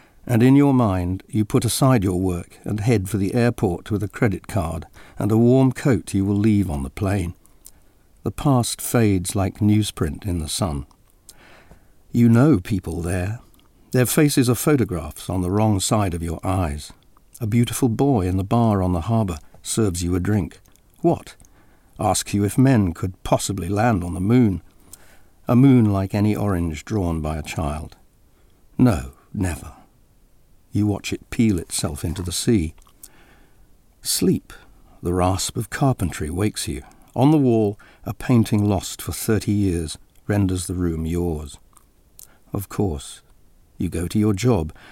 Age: 50-69